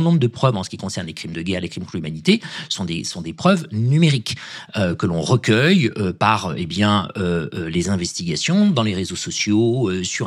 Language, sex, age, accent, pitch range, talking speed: French, male, 40-59, French, 105-155 Hz, 220 wpm